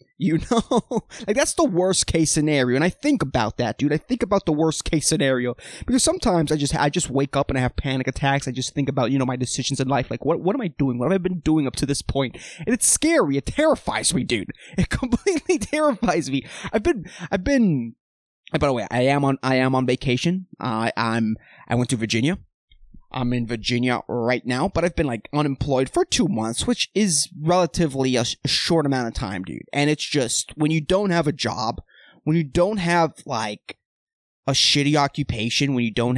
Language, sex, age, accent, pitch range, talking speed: English, male, 20-39, American, 125-170 Hz, 220 wpm